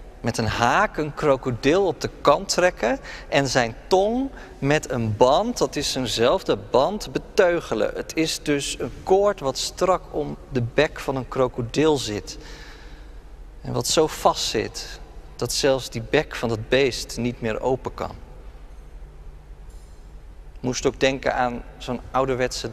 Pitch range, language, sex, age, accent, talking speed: 100-145 Hz, Dutch, male, 40-59, Dutch, 150 wpm